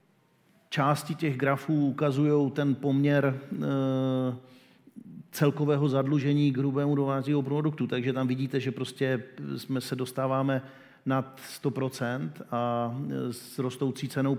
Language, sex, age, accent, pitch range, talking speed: Czech, male, 40-59, native, 125-145 Hz, 110 wpm